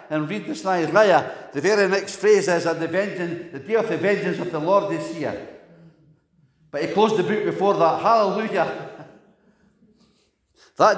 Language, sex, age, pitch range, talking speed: English, male, 60-79, 160-210 Hz, 165 wpm